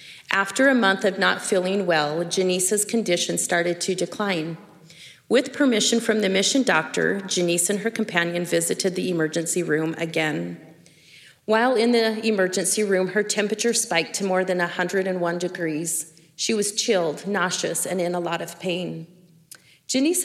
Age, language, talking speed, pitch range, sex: 30-49, English, 150 wpm, 170-210 Hz, female